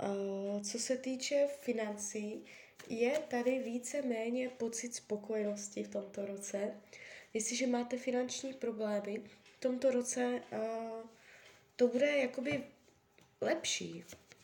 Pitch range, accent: 205-245 Hz, native